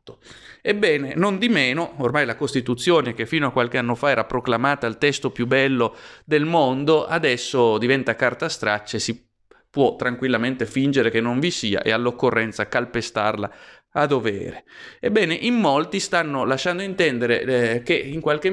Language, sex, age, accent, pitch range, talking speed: Italian, male, 30-49, native, 125-170 Hz, 160 wpm